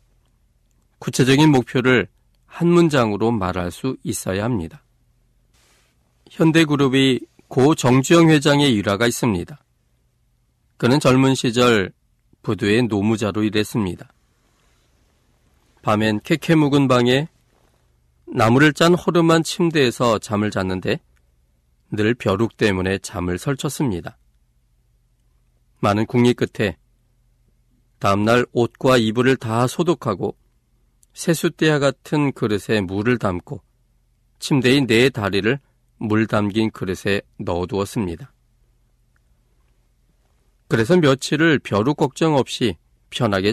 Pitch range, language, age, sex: 90-140 Hz, Korean, 40-59, male